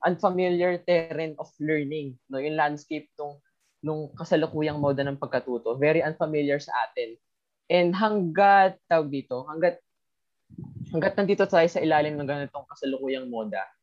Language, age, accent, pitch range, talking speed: Filipino, 20-39, native, 140-180 Hz, 130 wpm